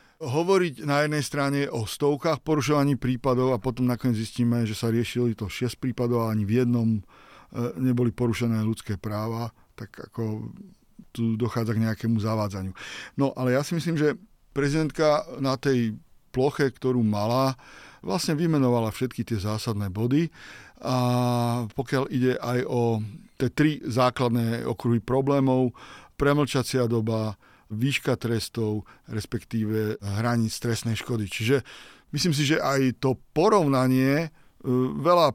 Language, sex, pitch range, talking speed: Slovak, male, 115-135 Hz, 130 wpm